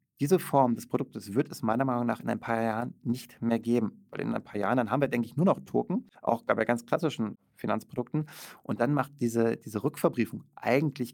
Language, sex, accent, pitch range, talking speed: German, male, German, 115-150 Hz, 220 wpm